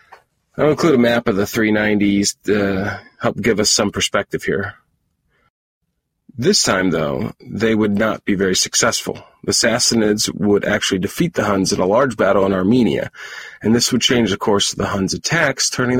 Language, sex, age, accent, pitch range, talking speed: English, male, 40-59, American, 100-115 Hz, 180 wpm